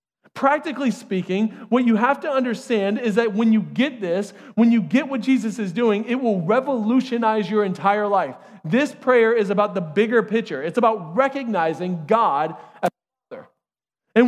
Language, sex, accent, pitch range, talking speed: English, male, American, 195-245 Hz, 170 wpm